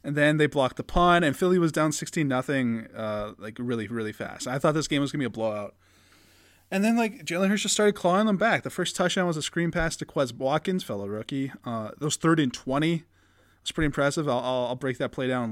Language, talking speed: English, 250 wpm